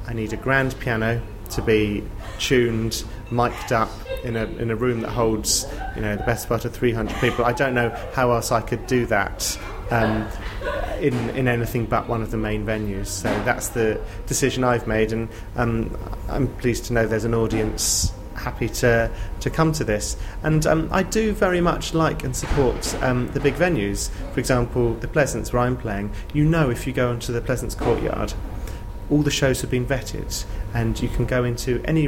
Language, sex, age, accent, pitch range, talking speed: English, male, 30-49, British, 105-130 Hz, 200 wpm